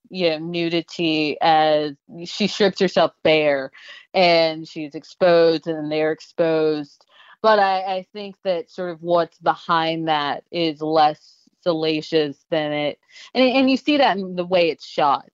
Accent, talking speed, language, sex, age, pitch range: American, 155 wpm, English, female, 30-49, 160-190 Hz